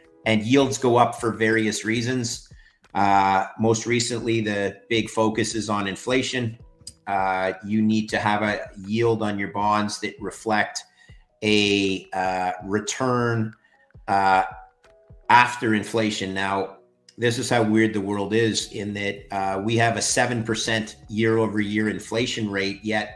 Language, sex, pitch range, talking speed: Bulgarian, male, 100-115 Hz, 135 wpm